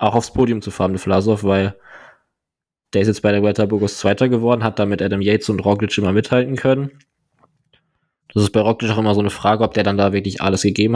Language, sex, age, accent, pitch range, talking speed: German, male, 20-39, German, 100-120 Hz, 230 wpm